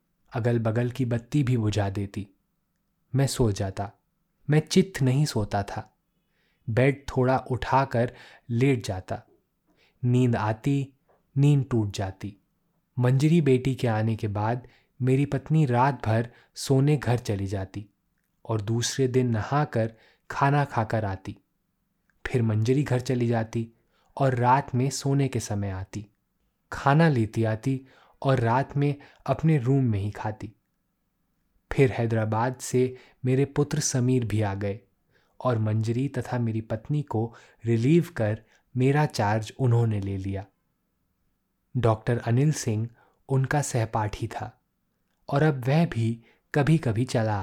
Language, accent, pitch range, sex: Hindi, native, 110-135 Hz, male